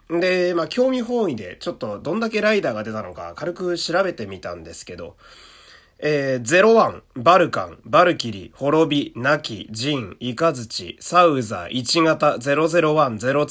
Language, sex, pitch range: Japanese, male, 115-185 Hz